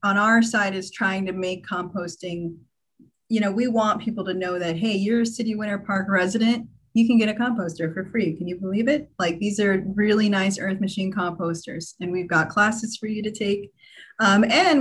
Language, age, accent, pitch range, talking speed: English, 30-49, American, 180-215 Hz, 210 wpm